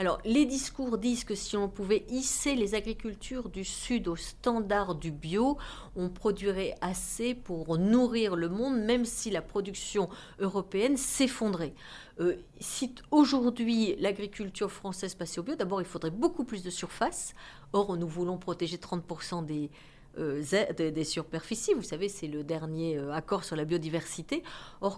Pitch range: 170-235 Hz